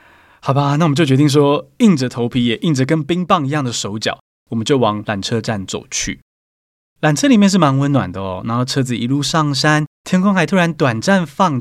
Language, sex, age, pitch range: Chinese, male, 20-39, 125-185 Hz